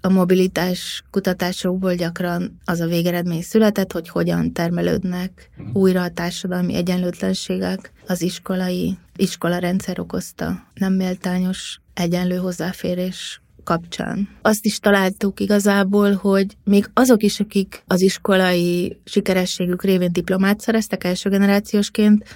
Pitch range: 180-200 Hz